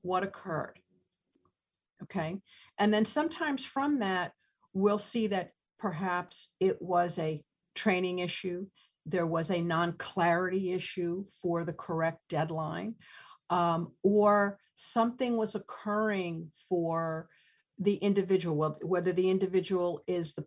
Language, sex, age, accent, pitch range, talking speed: English, female, 50-69, American, 170-215 Hz, 115 wpm